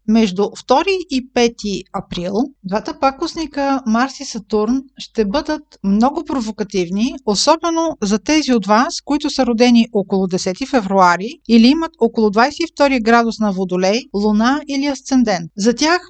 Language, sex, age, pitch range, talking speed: Bulgarian, female, 50-69, 210-250 Hz, 135 wpm